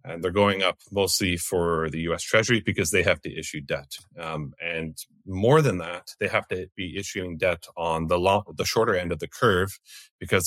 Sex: male